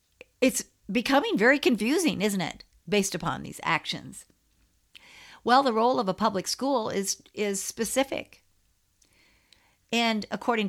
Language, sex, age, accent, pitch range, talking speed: English, female, 50-69, American, 180-230 Hz, 125 wpm